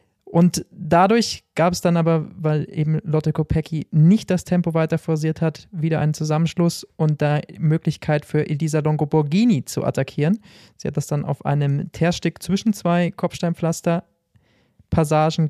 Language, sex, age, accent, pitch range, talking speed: German, male, 20-39, German, 150-175 Hz, 145 wpm